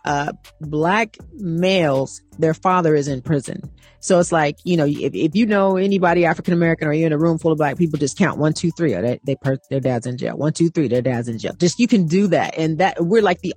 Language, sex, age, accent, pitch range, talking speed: English, female, 40-59, American, 145-180 Hz, 260 wpm